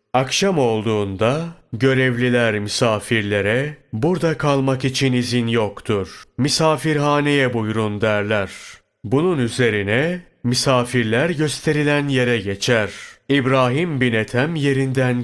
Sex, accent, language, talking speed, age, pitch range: male, native, Turkish, 85 wpm, 30-49, 110-135 Hz